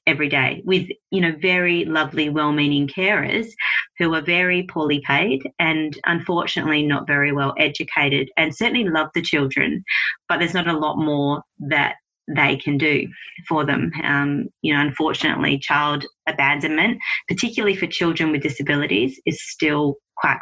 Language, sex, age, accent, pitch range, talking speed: English, female, 30-49, Australian, 145-175 Hz, 150 wpm